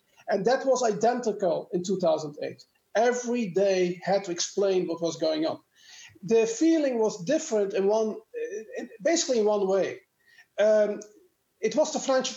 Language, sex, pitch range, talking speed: English, male, 205-270 Hz, 145 wpm